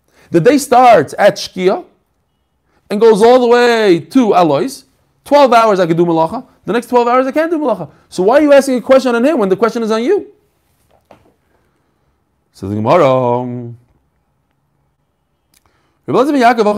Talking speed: 150 wpm